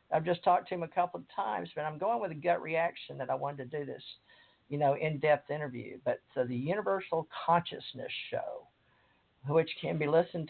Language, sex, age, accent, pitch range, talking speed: English, male, 50-69, American, 135-170 Hz, 205 wpm